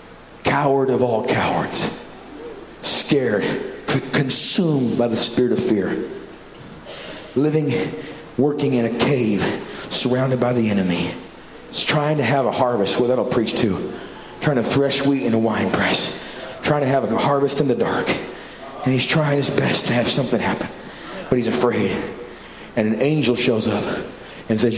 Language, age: English, 40-59